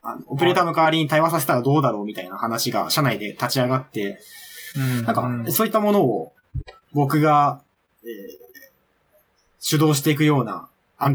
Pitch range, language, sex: 120-165 Hz, Japanese, male